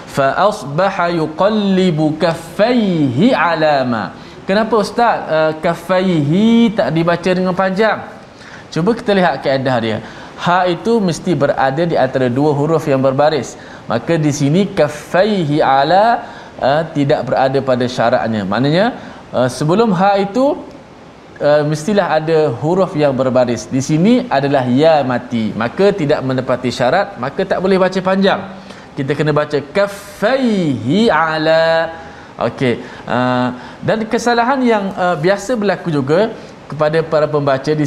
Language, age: Malayalam, 20-39